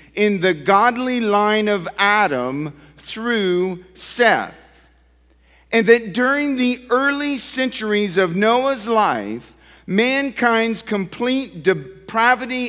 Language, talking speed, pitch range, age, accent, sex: English, 95 wpm, 165-220 Hz, 50-69, American, male